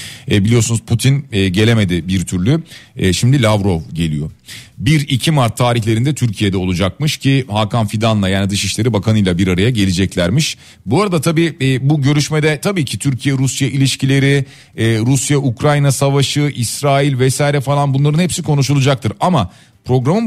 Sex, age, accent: male, 40-59, native